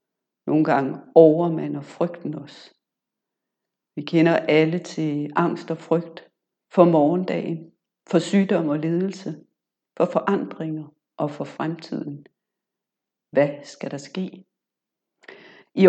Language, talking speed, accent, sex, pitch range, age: Danish, 105 wpm, native, female, 160-190 Hz, 60-79